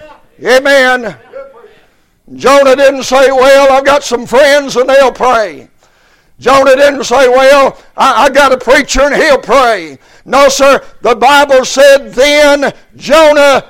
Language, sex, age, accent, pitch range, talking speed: English, male, 60-79, American, 255-285 Hz, 135 wpm